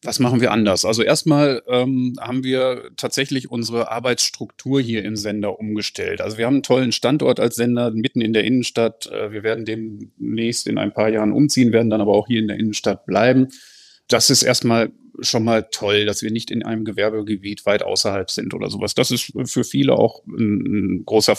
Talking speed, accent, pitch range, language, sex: 195 wpm, German, 105-125 Hz, German, male